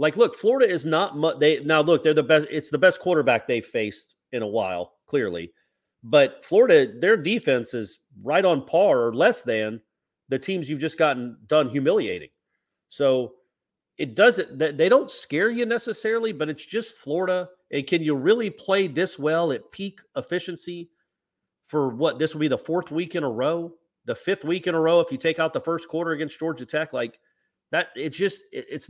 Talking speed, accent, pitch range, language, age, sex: 195 wpm, American, 140-185 Hz, English, 40-59, male